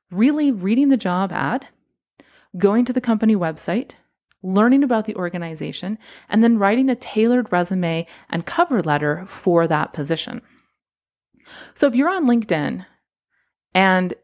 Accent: American